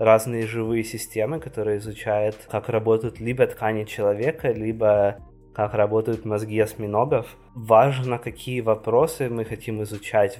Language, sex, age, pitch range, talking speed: Ukrainian, male, 20-39, 105-115 Hz, 120 wpm